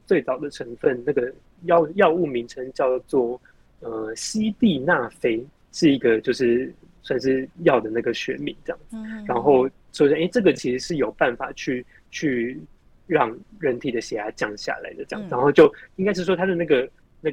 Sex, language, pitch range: male, Chinese, 125-180 Hz